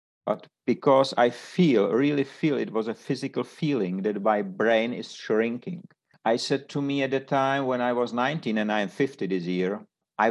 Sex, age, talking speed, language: male, 50-69, 200 wpm, English